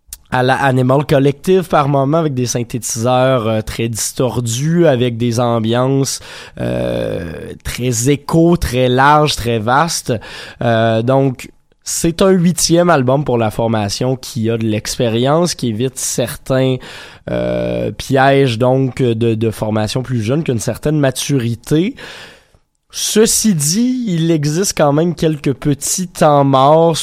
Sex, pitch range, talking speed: male, 115-150 Hz, 130 wpm